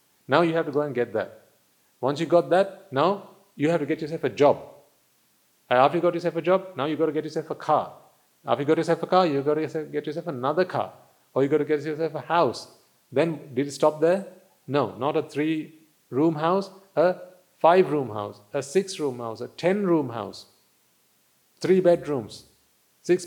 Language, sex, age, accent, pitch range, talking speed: English, male, 40-59, Indian, 140-170 Hz, 200 wpm